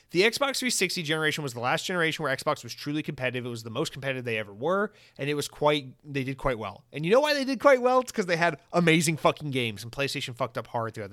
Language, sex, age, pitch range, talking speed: English, male, 30-49, 125-160 Hz, 270 wpm